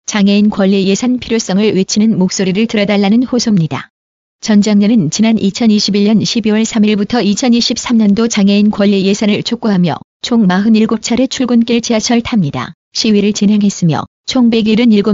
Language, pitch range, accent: Korean, 195-225 Hz, native